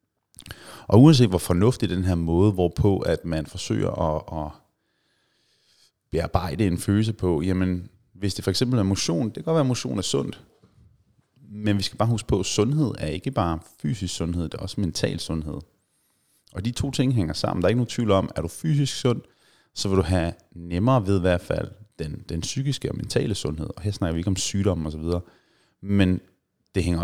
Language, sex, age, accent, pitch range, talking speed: Danish, male, 30-49, native, 90-115 Hz, 205 wpm